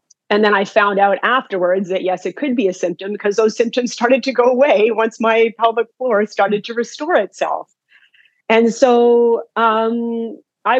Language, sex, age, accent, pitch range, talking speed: English, female, 30-49, American, 185-235 Hz, 180 wpm